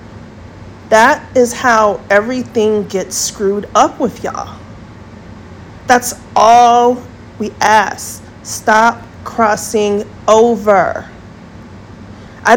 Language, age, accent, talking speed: English, 40-59, American, 80 wpm